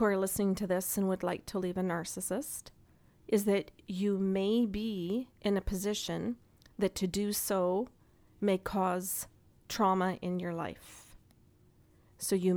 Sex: female